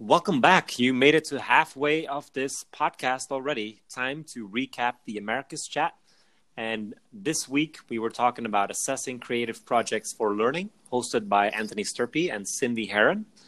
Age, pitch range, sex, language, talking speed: 30-49, 105-140 Hz, male, English, 160 wpm